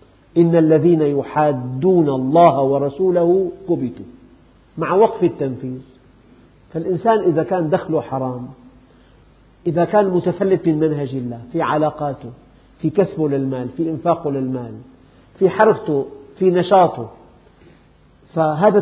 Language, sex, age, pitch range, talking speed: Arabic, male, 50-69, 130-180 Hz, 105 wpm